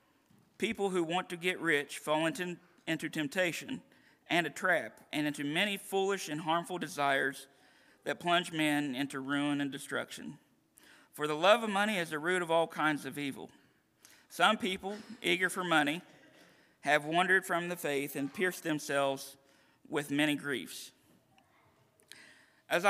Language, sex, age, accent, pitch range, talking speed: English, male, 50-69, American, 150-180 Hz, 150 wpm